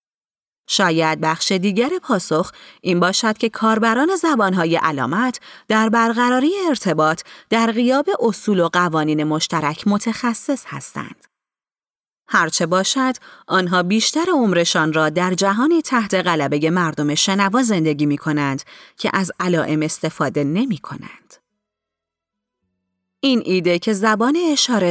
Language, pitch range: Persian, 160-240 Hz